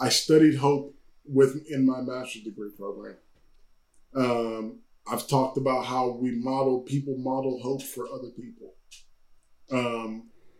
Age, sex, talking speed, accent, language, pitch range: 10-29, male, 125 wpm, American, English, 125-145 Hz